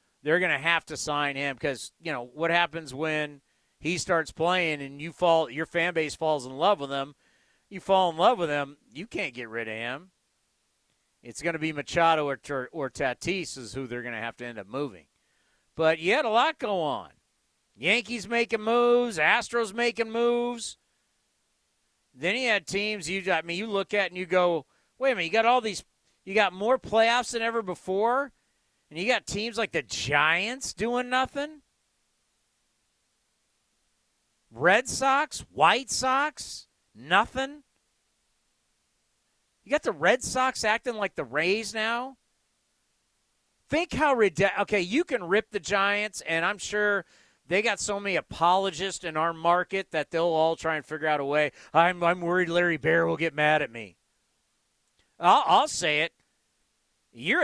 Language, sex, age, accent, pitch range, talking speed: English, male, 40-59, American, 155-230 Hz, 175 wpm